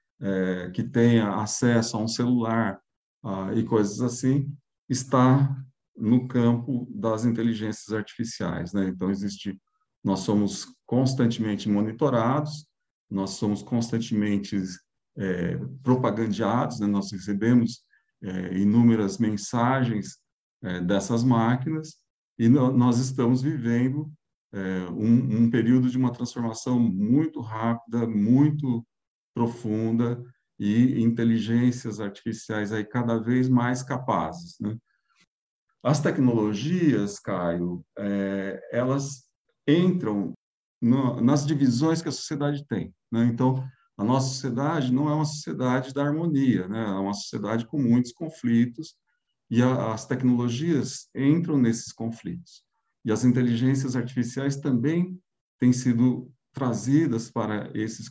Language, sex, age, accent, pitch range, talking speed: Portuguese, male, 50-69, Brazilian, 110-130 Hz, 115 wpm